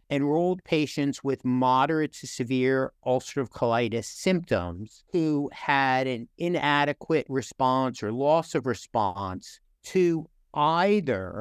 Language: English